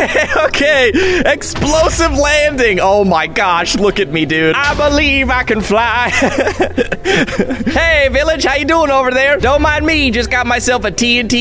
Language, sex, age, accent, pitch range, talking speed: English, male, 20-39, American, 180-250 Hz, 160 wpm